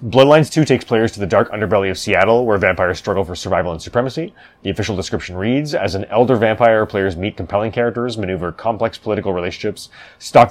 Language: English